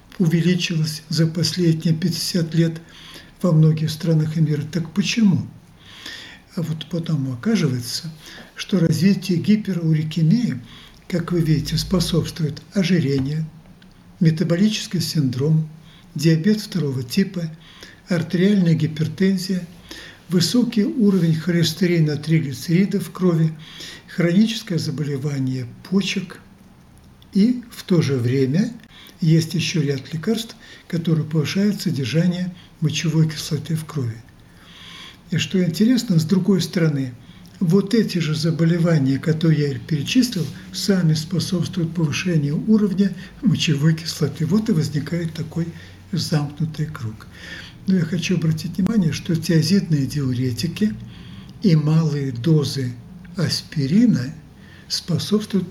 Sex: male